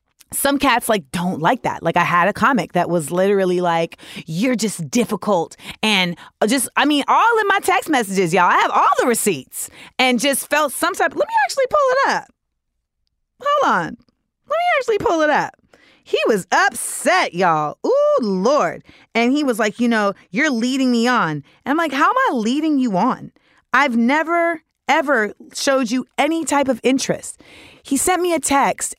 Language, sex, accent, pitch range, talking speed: English, female, American, 195-275 Hz, 190 wpm